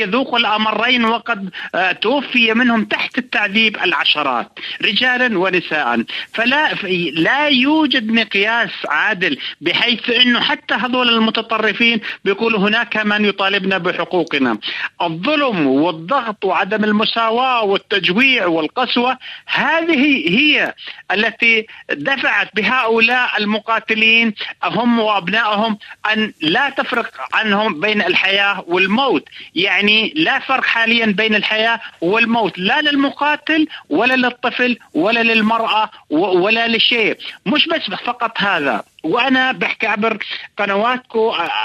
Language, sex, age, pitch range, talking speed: Arabic, male, 40-59, 210-265 Hz, 100 wpm